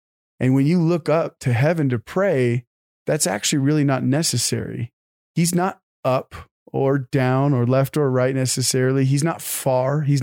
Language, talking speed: English, 165 wpm